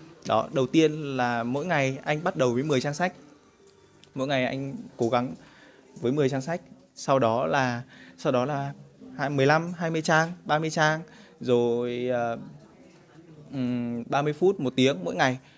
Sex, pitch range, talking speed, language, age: male, 115-140 Hz, 160 wpm, Vietnamese, 20-39